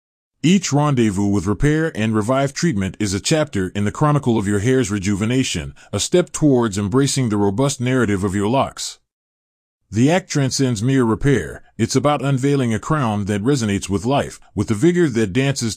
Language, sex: English, male